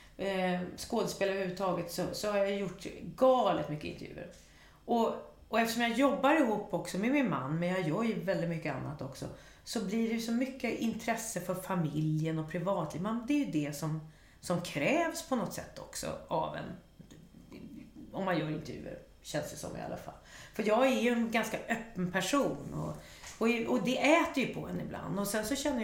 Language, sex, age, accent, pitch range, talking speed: Swedish, female, 40-59, native, 175-245 Hz, 190 wpm